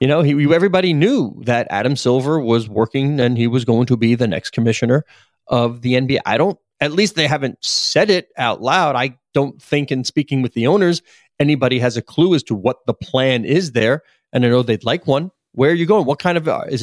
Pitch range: 120-150 Hz